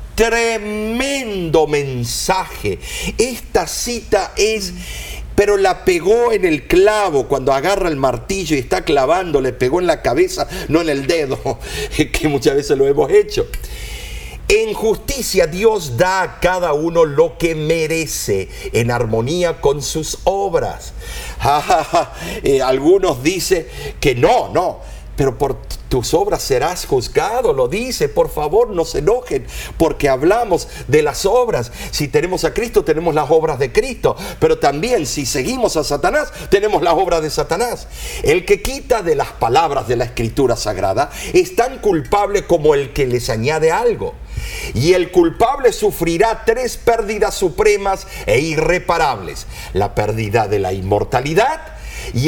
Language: Spanish